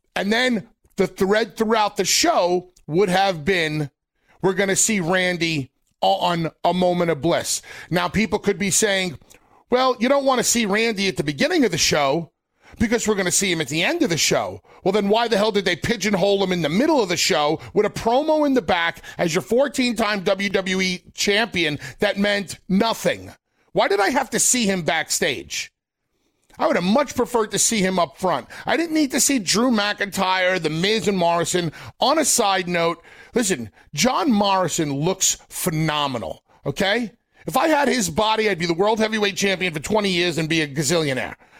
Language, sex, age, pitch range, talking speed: English, male, 40-59, 175-230 Hz, 195 wpm